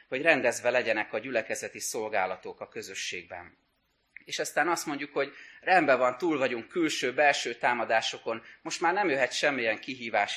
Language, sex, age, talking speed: Hungarian, male, 30-49, 150 wpm